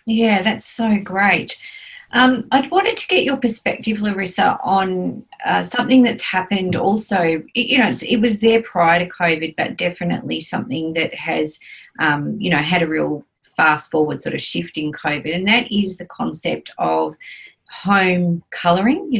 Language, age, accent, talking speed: English, 30-49, Australian, 170 wpm